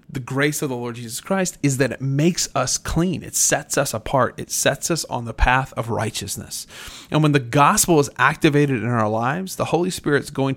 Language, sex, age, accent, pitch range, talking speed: English, male, 30-49, American, 115-150 Hz, 220 wpm